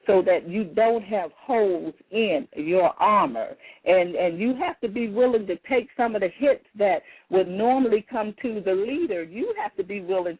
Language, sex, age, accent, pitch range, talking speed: English, female, 50-69, American, 165-225 Hz, 195 wpm